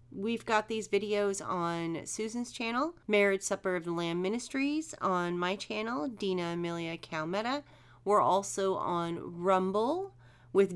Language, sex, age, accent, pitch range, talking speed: English, female, 40-59, American, 150-205 Hz, 135 wpm